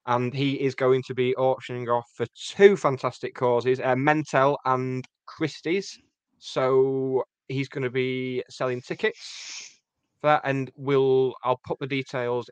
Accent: British